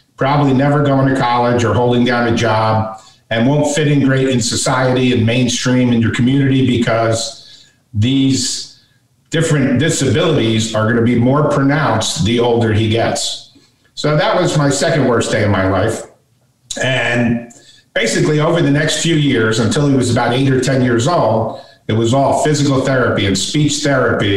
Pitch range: 115-145 Hz